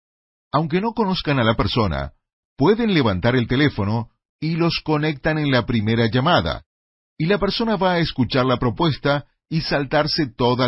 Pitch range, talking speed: 110-170 Hz, 155 wpm